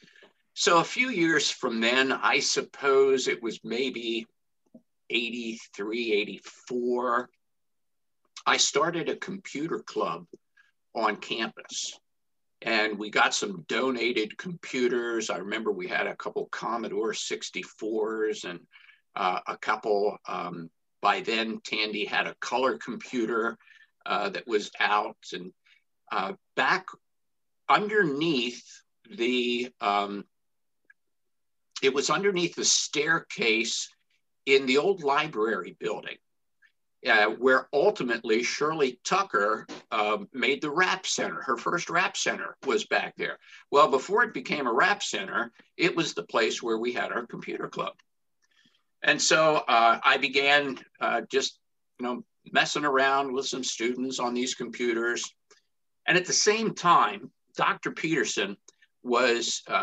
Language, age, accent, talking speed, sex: English, 50-69, American, 125 wpm, male